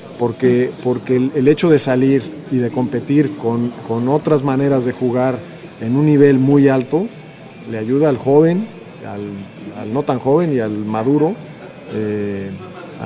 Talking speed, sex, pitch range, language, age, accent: 155 wpm, male, 120-150 Hz, Spanish, 40-59, Mexican